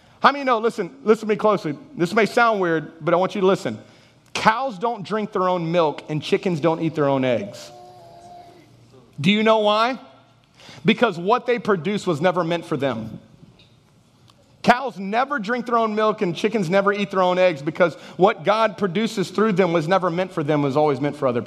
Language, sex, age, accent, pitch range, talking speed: English, male, 30-49, American, 170-210 Hz, 205 wpm